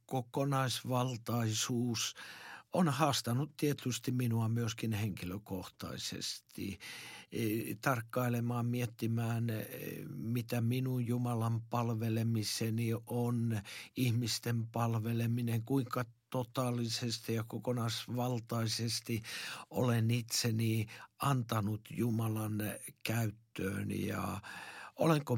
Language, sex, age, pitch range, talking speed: Finnish, male, 60-79, 110-125 Hz, 65 wpm